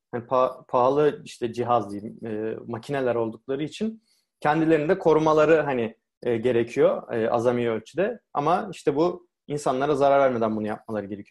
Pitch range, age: 120-160 Hz, 30-49